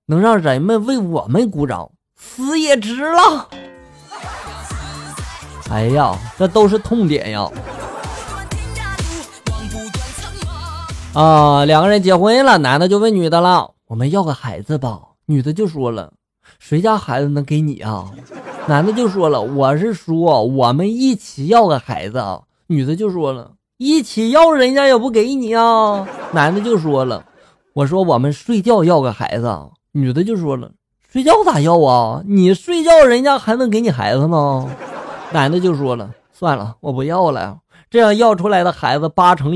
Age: 20-39